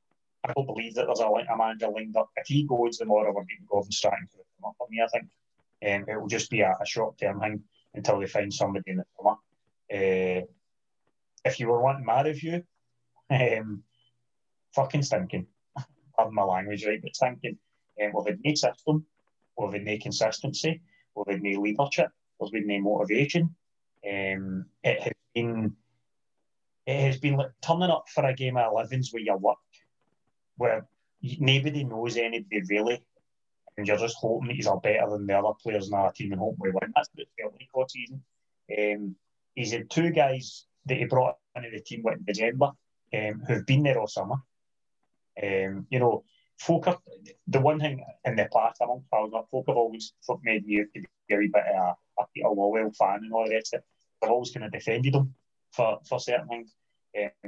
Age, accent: 30-49, British